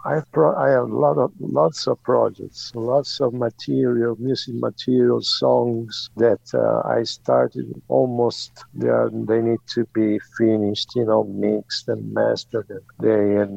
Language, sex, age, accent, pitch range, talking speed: English, male, 60-79, Italian, 110-125 Hz, 135 wpm